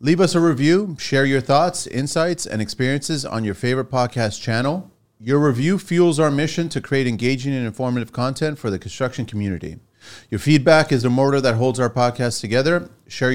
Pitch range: 115-145 Hz